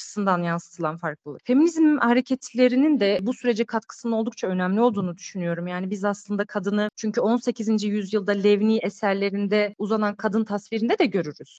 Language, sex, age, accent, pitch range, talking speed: Turkish, female, 40-59, native, 200-255 Hz, 125 wpm